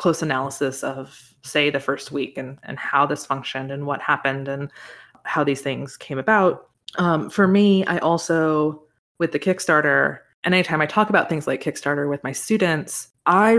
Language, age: English, 20-39